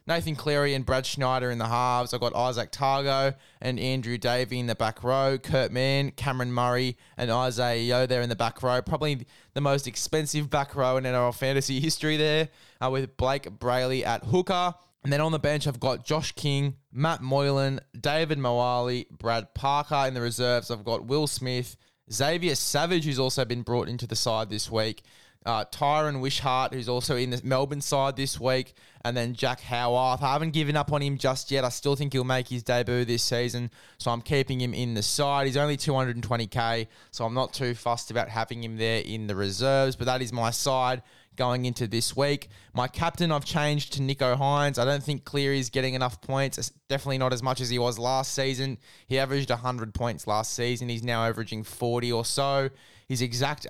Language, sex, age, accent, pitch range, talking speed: English, male, 20-39, Australian, 120-140 Hz, 200 wpm